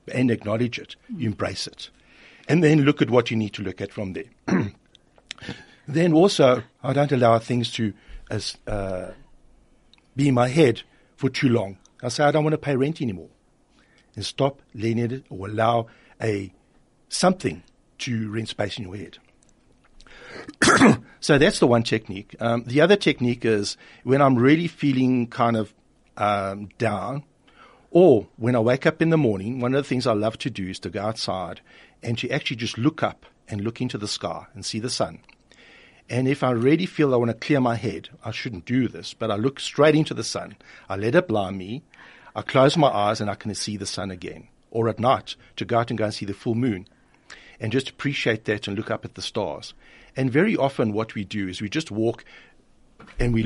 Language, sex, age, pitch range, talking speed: German, male, 60-79, 105-135 Hz, 205 wpm